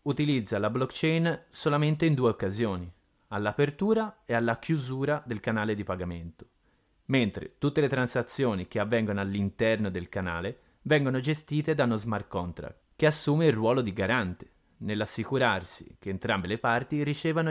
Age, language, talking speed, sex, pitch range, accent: 30-49, Italian, 145 wpm, male, 95-140 Hz, native